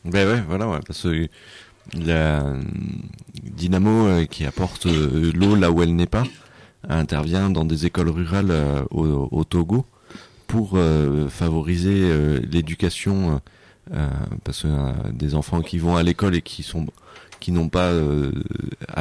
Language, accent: French, French